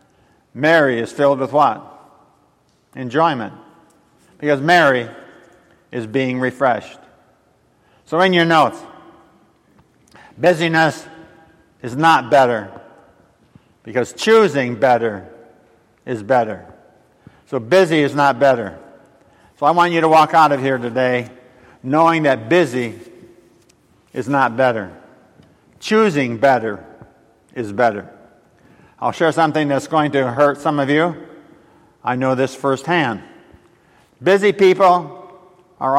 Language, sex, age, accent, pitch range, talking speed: English, male, 50-69, American, 125-165 Hz, 110 wpm